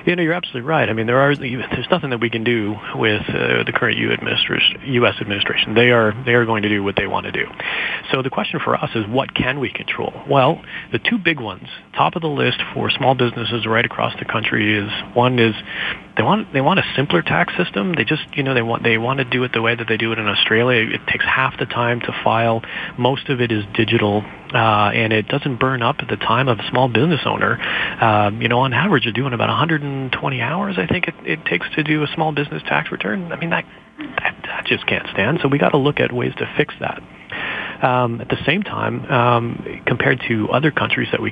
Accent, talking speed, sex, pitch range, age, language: American, 245 wpm, male, 110-135 Hz, 30-49, English